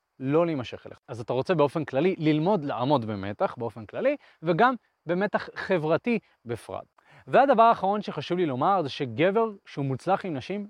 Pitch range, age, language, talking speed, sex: 135-220 Hz, 20-39, Hebrew, 155 wpm, male